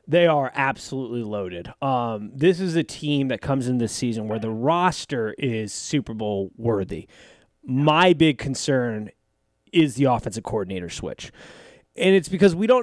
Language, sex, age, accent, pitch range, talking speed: English, male, 20-39, American, 110-150 Hz, 160 wpm